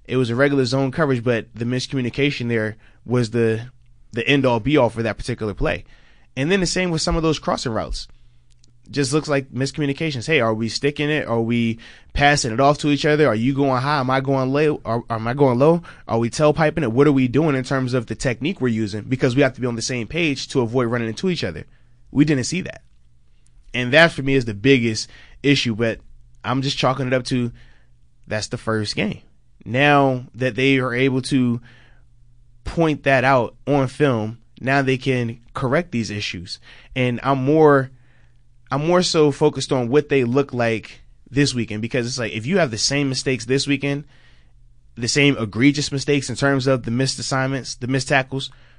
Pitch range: 115-140 Hz